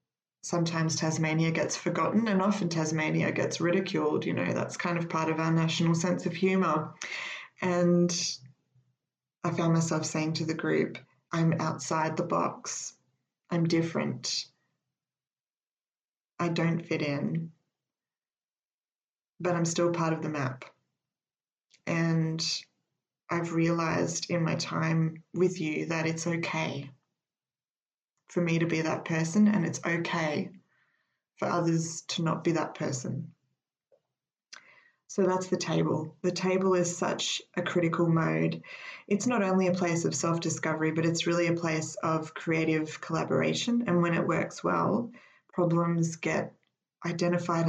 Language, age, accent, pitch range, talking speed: English, 20-39, Australian, 160-175 Hz, 135 wpm